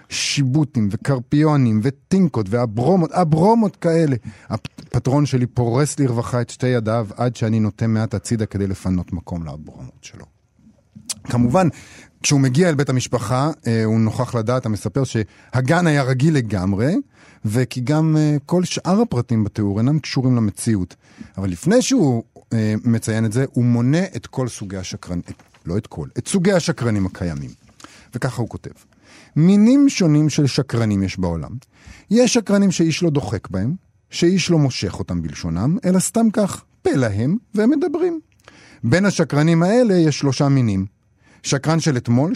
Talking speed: 145 wpm